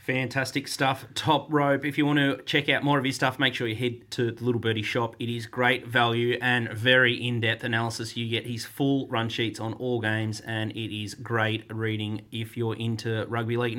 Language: English